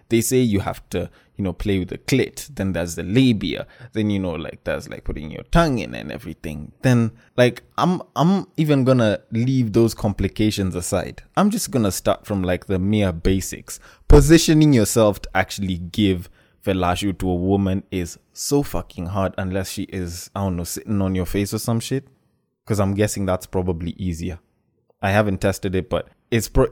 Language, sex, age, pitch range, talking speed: English, male, 20-39, 95-140 Hz, 195 wpm